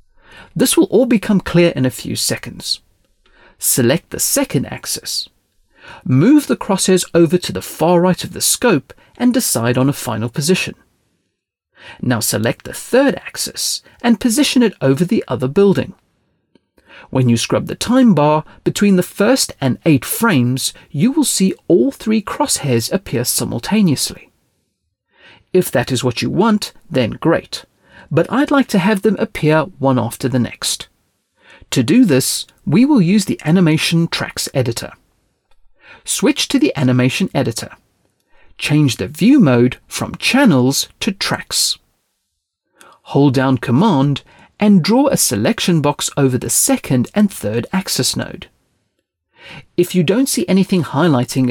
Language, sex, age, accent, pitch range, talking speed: English, male, 40-59, British, 130-210 Hz, 145 wpm